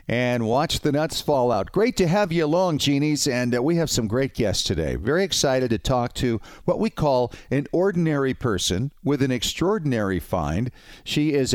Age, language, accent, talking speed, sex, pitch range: 50-69, English, American, 190 wpm, male, 115-145 Hz